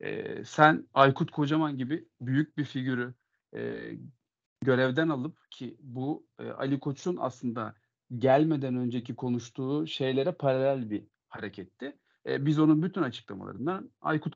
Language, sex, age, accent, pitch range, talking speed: Turkish, male, 40-59, native, 125-155 Hz, 125 wpm